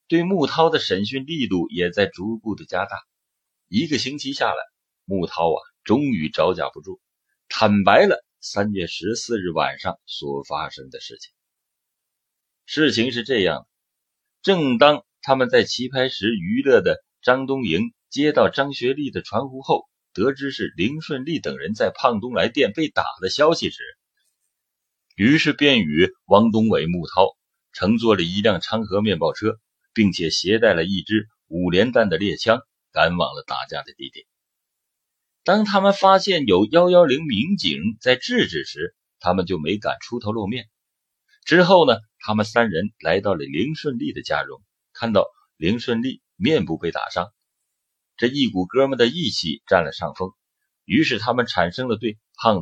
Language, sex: Chinese, male